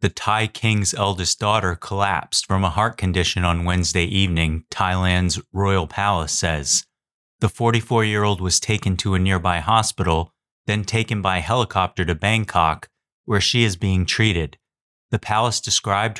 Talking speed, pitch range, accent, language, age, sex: 145 wpm, 90-110 Hz, American, English, 30-49, male